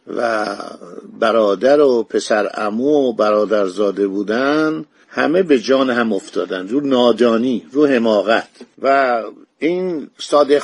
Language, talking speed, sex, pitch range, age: Persian, 115 wpm, male, 130-175 Hz, 50-69